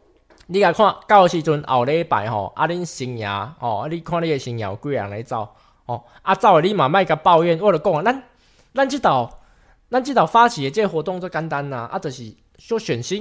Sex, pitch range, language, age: male, 145-220 Hz, Chinese, 20-39